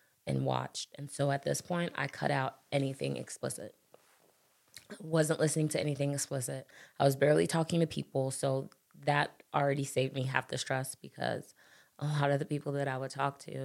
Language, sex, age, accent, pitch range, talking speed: English, female, 20-39, American, 140-165 Hz, 190 wpm